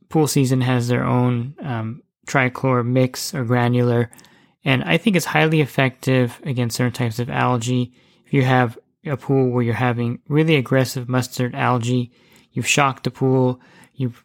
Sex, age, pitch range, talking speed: male, 20-39, 125-135 Hz, 160 wpm